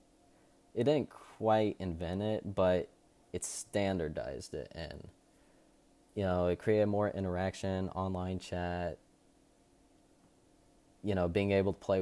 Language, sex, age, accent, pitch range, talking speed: English, male, 20-39, American, 90-105 Hz, 120 wpm